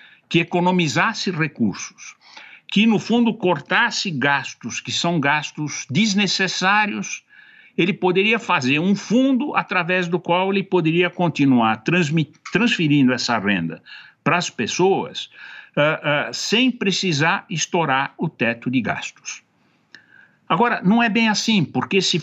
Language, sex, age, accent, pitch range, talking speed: Portuguese, male, 60-79, Brazilian, 135-200 Hz, 115 wpm